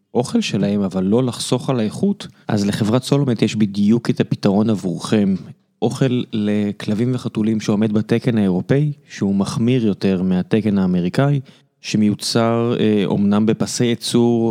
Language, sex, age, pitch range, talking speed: Hebrew, male, 20-39, 105-130 Hz, 130 wpm